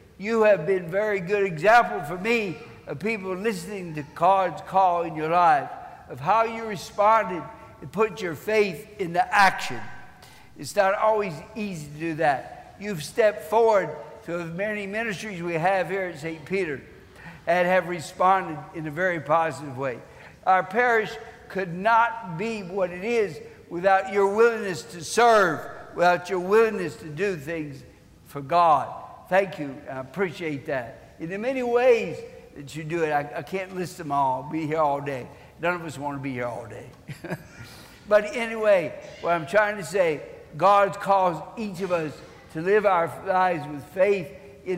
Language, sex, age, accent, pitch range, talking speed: English, male, 60-79, American, 160-210 Hz, 170 wpm